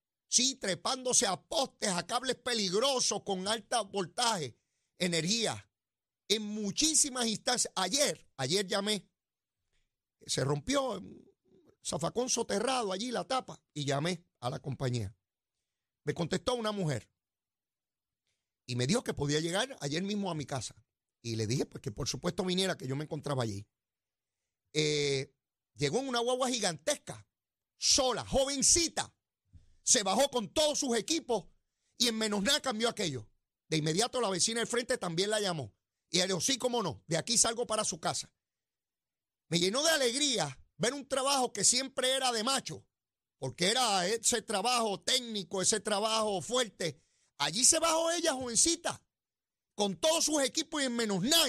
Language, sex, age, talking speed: Spanish, male, 40-59, 155 wpm